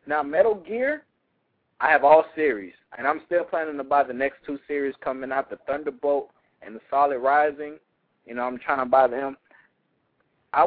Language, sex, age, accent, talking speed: English, male, 20-39, American, 185 wpm